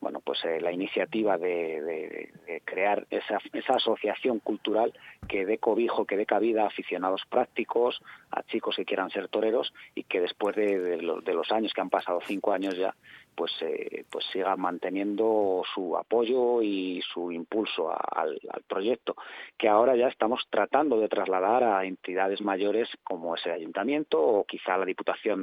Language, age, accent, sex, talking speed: Spanish, 40-59, Spanish, male, 170 wpm